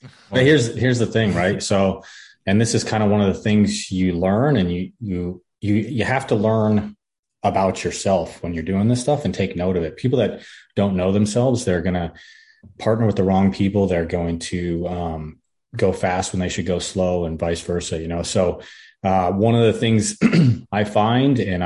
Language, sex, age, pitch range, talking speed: English, male, 30-49, 90-110 Hz, 205 wpm